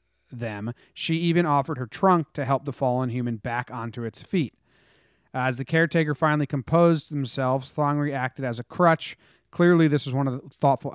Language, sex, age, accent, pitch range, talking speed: English, male, 30-49, American, 120-155 Hz, 180 wpm